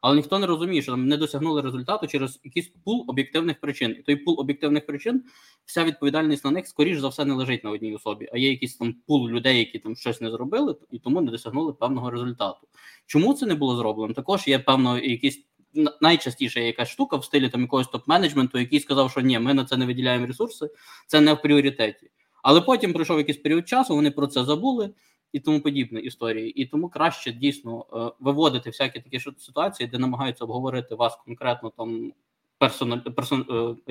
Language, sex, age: Ukrainian, male, 20-39